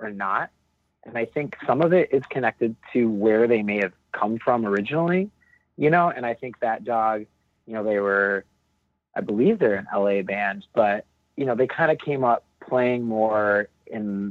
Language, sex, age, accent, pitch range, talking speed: English, male, 30-49, American, 100-120 Hz, 195 wpm